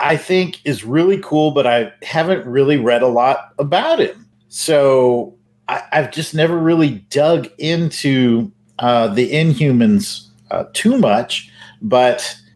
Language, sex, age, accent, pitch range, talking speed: English, male, 50-69, American, 105-140 Hz, 140 wpm